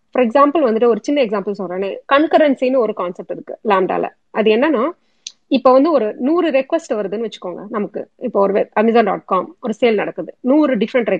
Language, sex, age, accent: Tamil, female, 30-49, native